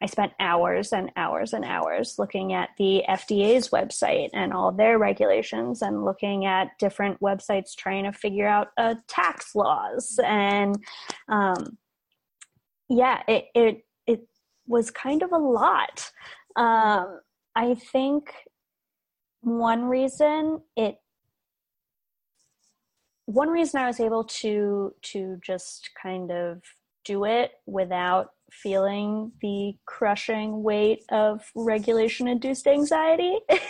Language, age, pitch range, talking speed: English, 20-39, 195-245 Hz, 120 wpm